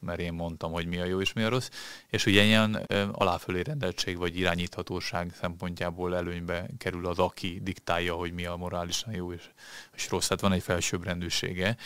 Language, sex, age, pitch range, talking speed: Hungarian, male, 30-49, 90-105 Hz, 175 wpm